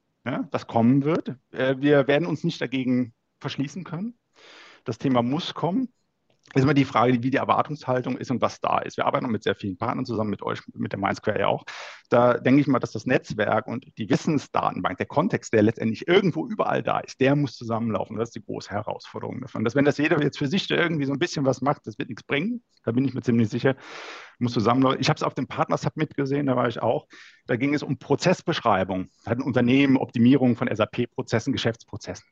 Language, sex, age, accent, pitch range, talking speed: German, male, 50-69, German, 115-150 Hz, 220 wpm